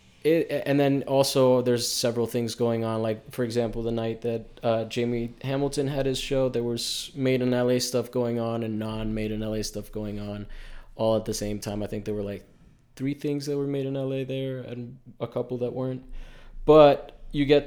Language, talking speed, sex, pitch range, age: English, 205 wpm, male, 110-130 Hz, 20-39